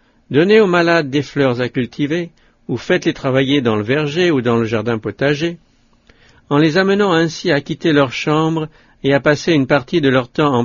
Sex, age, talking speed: male, 60-79, 195 wpm